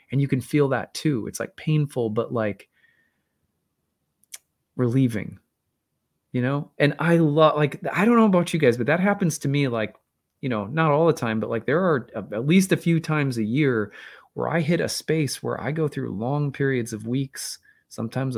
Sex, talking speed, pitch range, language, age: male, 200 wpm, 110-140 Hz, English, 20-39